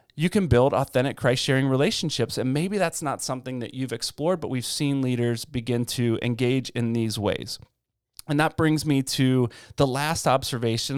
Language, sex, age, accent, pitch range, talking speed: English, male, 30-49, American, 120-155 Hz, 175 wpm